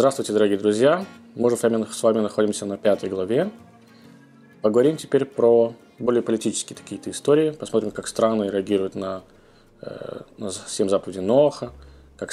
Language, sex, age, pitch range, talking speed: Russian, male, 20-39, 105-130 Hz, 135 wpm